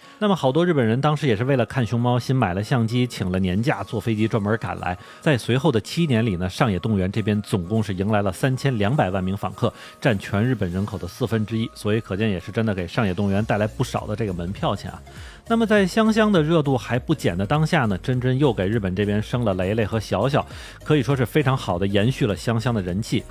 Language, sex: Chinese, male